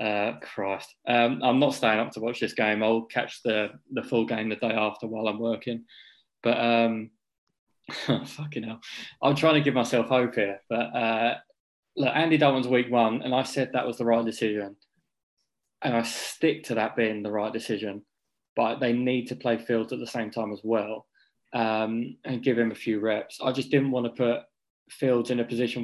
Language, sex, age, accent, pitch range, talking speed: English, male, 20-39, British, 110-125 Hz, 200 wpm